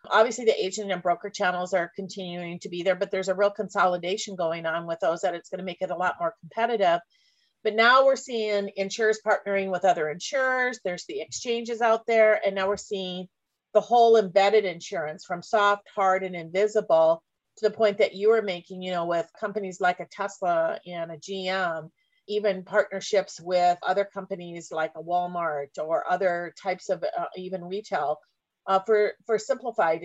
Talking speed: 185 wpm